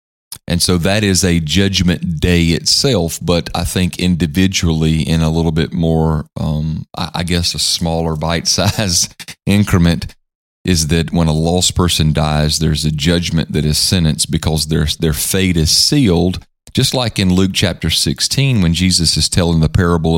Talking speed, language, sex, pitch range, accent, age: 165 wpm, English, male, 80-95 Hz, American, 30-49